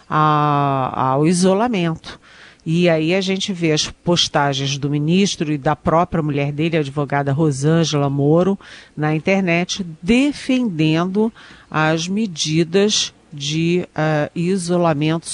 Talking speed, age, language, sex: 105 wpm, 50-69, Portuguese, female